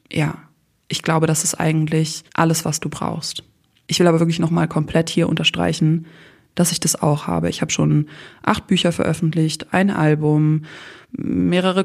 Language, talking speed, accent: German, 165 wpm, German